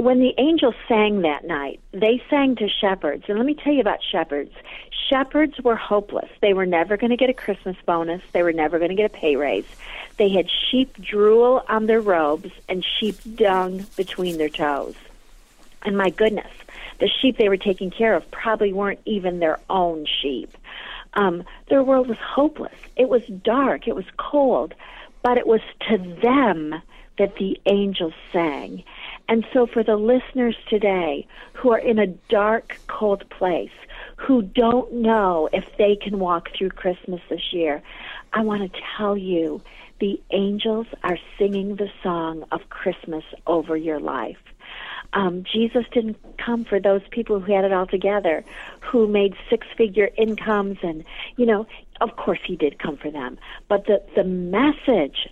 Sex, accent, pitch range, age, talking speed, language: female, American, 180-230 Hz, 50-69, 170 wpm, English